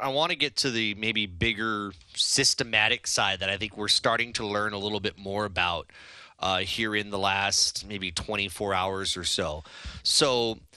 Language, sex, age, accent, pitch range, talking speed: English, male, 30-49, American, 100-130 Hz, 185 wpm